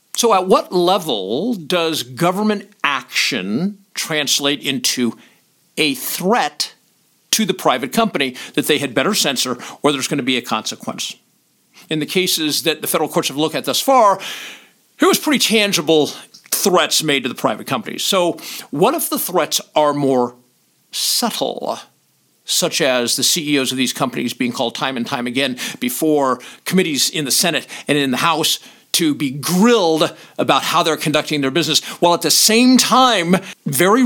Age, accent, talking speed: 50-69, American, 165 wpm